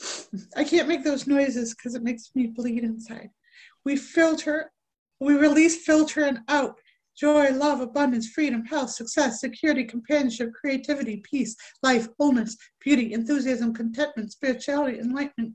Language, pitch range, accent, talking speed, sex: English, 240-285 Hz, American, 135 wpm, female